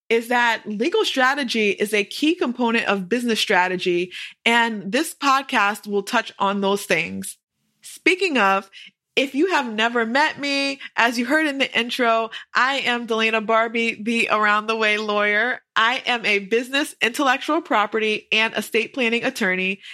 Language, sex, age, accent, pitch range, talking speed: English, female, 20-39, American, 205-265 Hz, 150 wpm